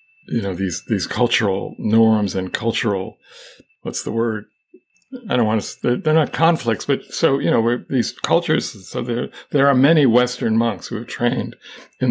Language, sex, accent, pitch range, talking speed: English, male, American, 105-125 Hz, 185 wpm